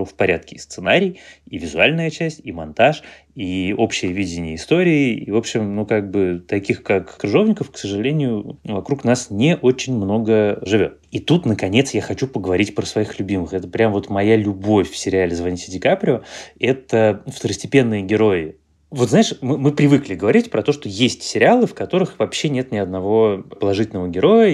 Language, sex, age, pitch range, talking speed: Russian, male, 20-39, 100-135 Hz, 175 wpm